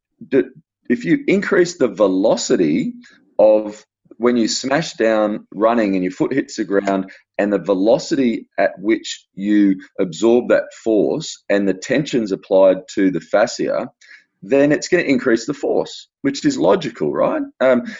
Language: English